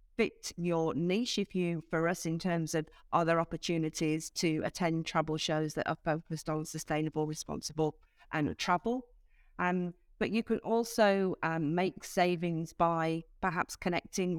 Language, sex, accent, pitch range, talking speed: English, female, British, 165-200 Hz, 145 wpm